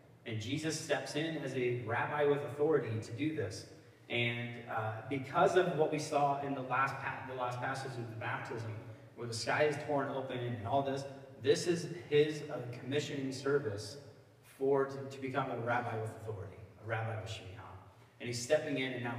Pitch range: 115-145 Hz